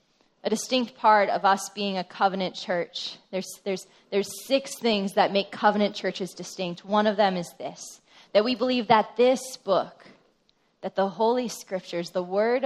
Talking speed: 170 wpm